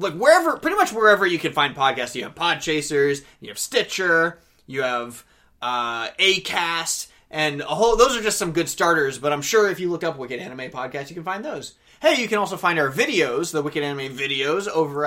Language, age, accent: English, 20-39, American